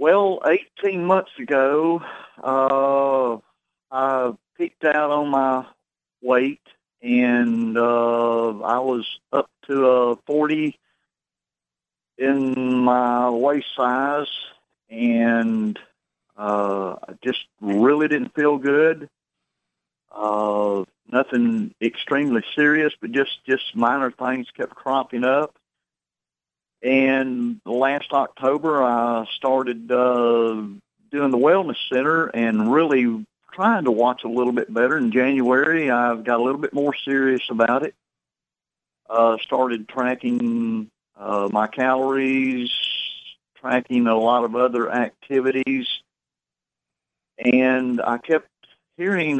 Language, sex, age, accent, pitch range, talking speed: English, male, 50-69, American, 115-140 Hz, 110 wpm